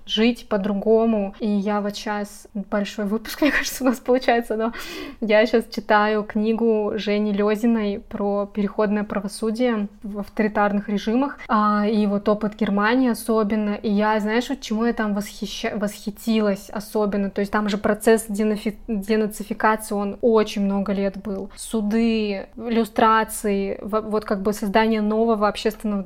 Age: 20-39